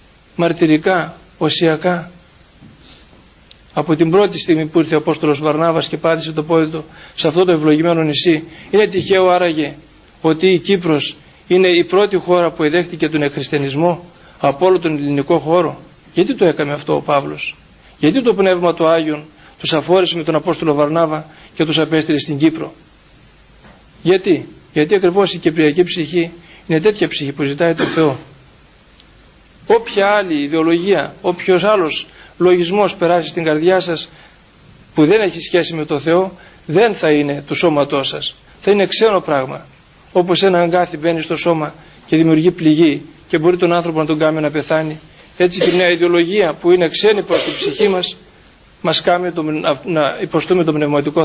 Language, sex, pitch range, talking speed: Greek, male, 155-180 Hz, 160 wpm